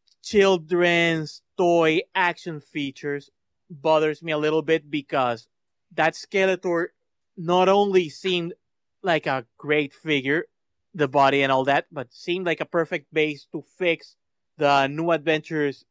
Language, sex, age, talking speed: English, male, 20-39, 130 wpm